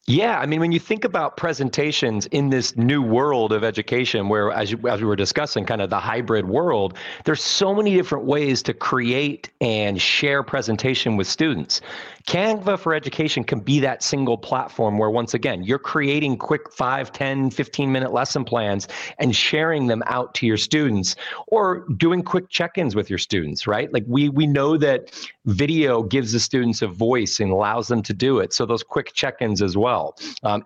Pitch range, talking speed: 110-145 Hz, 190 wpm